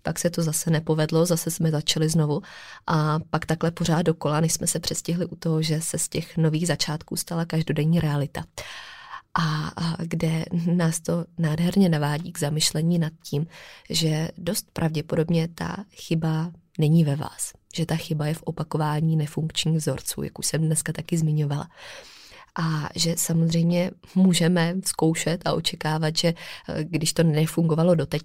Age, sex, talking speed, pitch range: 20-39, female, 155 wpm, 155-170 Hz